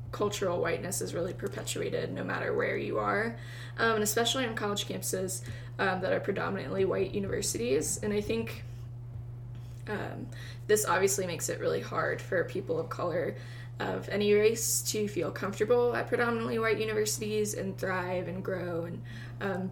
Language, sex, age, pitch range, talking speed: English, female, 10-29, 115-155 Hz, 160 wpm